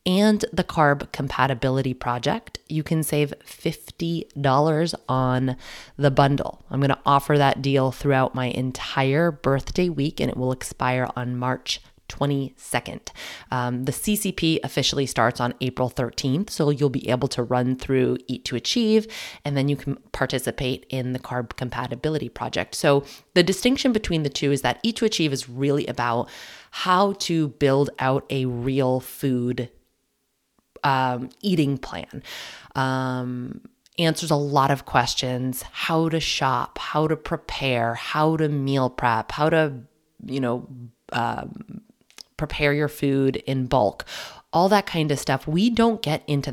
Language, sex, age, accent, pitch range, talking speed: English, female, 20-39, American, 130-155 Hz, 150 wpm